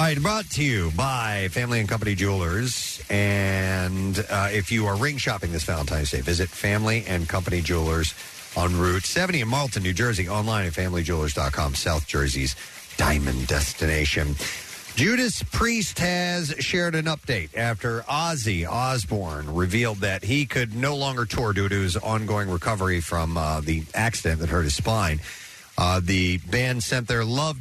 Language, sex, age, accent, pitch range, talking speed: English, male, 40-59, American, 85-125 Hz, 160 wpm